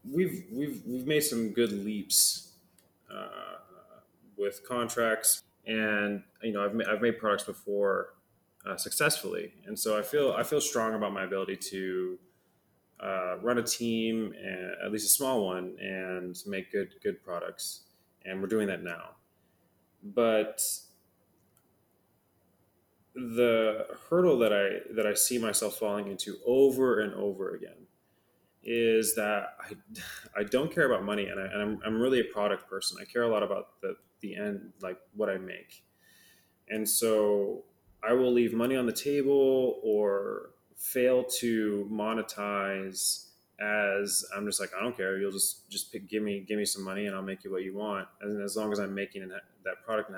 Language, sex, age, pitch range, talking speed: English, male, 20-39, 100-120 Hz, 170 wpm